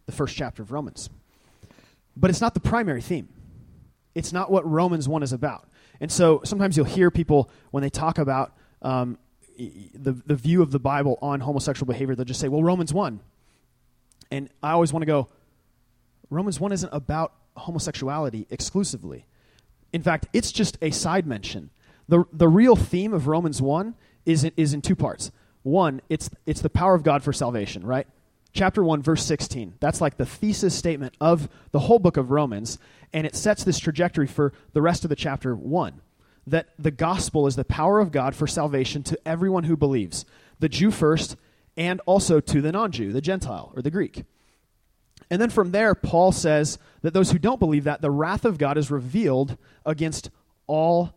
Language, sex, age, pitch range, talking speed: English, male, 30-49, 135-175 Hz, 185 wpm